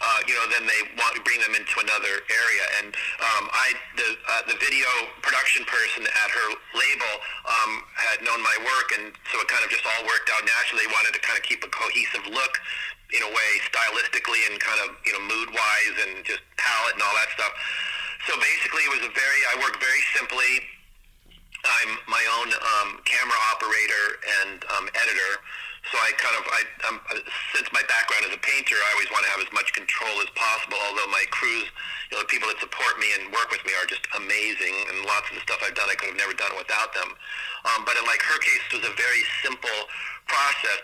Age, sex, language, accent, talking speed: 40-59, male, English, American, 220 wpm